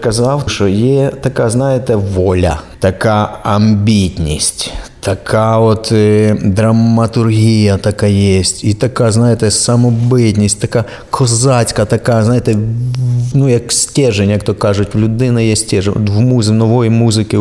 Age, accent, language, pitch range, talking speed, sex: 30-49, native, Ukrainian, 105-120 Hz, 120 wpm, male